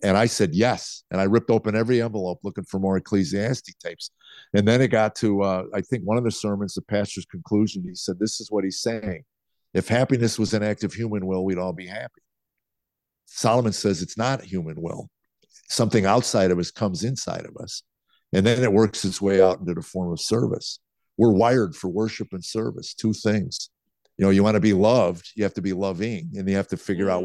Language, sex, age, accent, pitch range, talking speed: English, male, 50-69, American, 90-110 Hz, 225 wpm